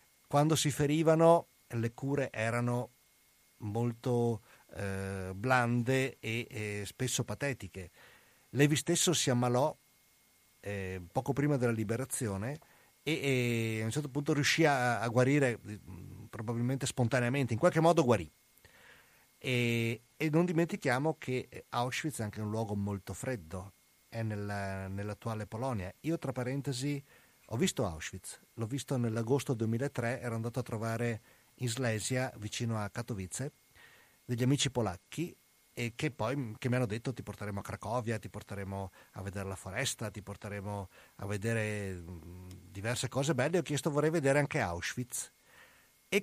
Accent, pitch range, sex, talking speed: native, 105-140 Hz, male, 135 wpm